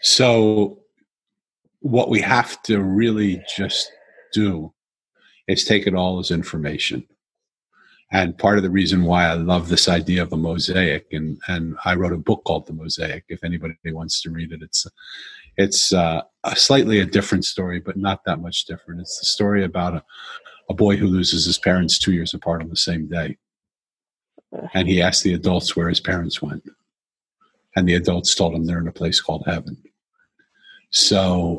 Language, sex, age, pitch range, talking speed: English, male, 50-69, 85-100 Hz, 180 wpm